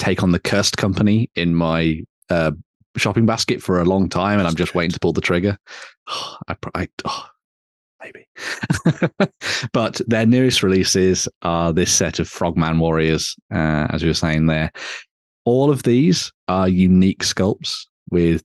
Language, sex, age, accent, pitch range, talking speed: English, male, 30-49, British, 80-100 Hz, 165 wpm